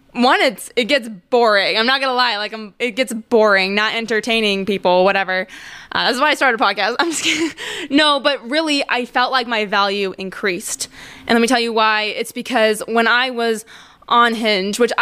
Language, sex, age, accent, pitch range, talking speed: English, female, 20-39, American, 215-270 Hz, 205 wpm